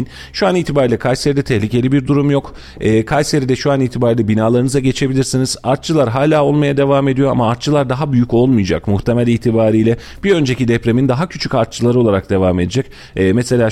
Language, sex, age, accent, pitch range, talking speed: Turkish, male, 40-59, native, 110-135 Hz, 165 wpm